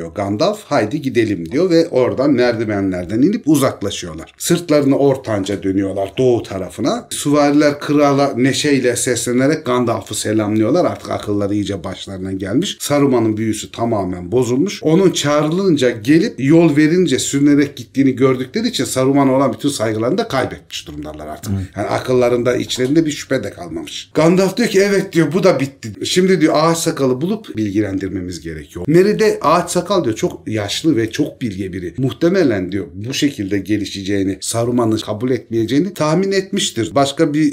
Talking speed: 145 wpm